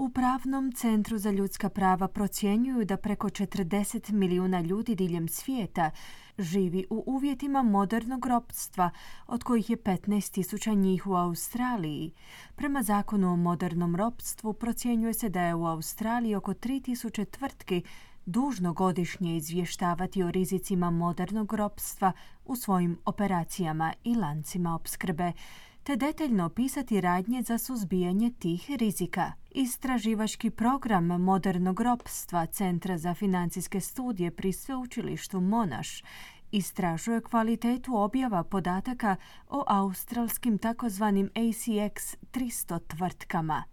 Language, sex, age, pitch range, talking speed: Croatian, female, 20-39, 180-230 Hz, 115 wpm